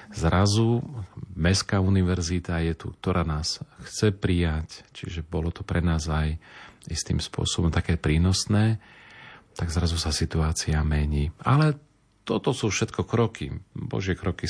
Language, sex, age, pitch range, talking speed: Slovak, male, 40-59, 80-95 Hz, 130 wpm